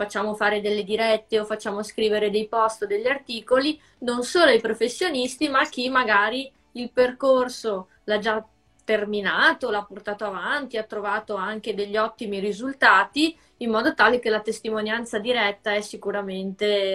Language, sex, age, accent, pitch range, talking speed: Italian, female, 20-39, native, 215-275 Hz, 150 wpm